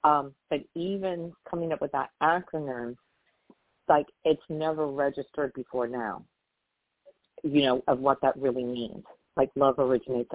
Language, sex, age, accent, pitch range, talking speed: English, female, 50-69, American, 120-135 Hz, 140 wpm